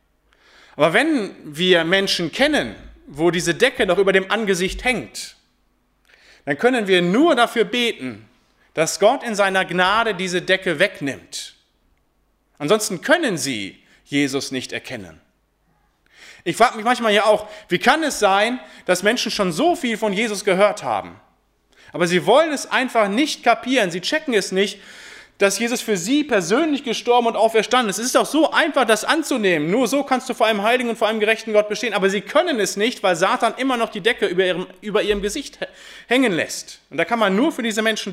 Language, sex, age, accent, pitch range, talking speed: German, male, 30-49, German, 185-235 Hz, 185 wpm